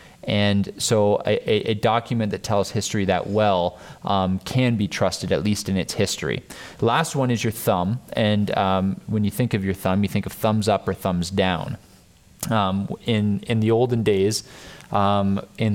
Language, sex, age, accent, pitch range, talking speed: English, male, 20-39, American, 95-115 Hz, 185 wpm